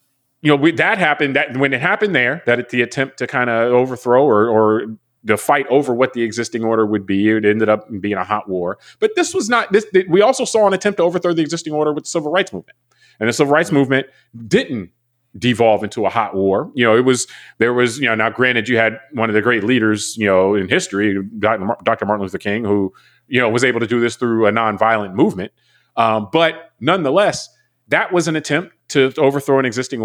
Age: 30-49